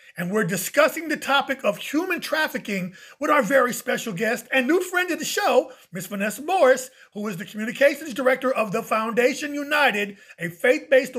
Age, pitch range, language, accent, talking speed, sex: 30-49, 185-260 Hz, English, American, 175 wpm, male